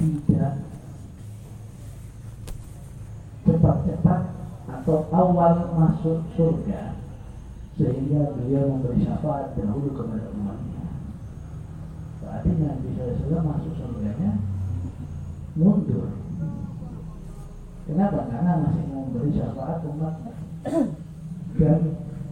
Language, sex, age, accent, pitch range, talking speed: Indonesian, male, 40-59, native, 115-165 Hz, 75 wpm